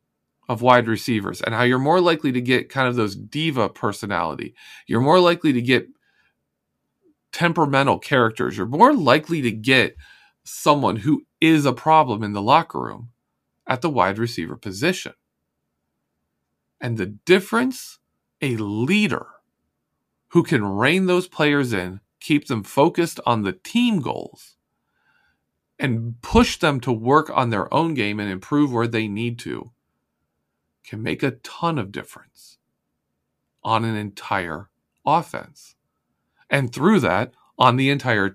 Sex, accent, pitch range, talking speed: male, American, 105-170 Hz, 140 wpm